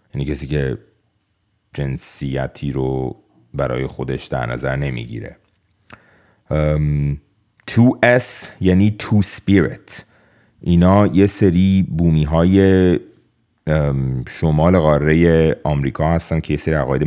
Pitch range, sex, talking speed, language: 75-100 Hz, male, 95 wpm, Persian